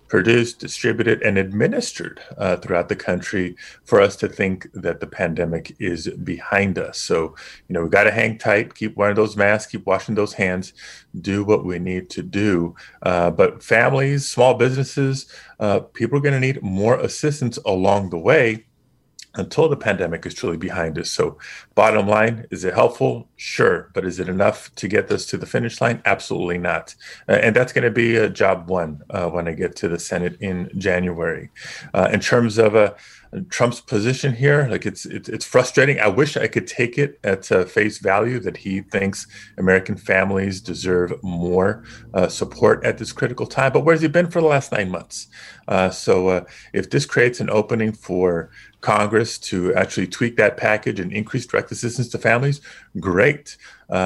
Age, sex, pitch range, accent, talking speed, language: 30-49, male, 90-120 Hz, American, 190 wpm, English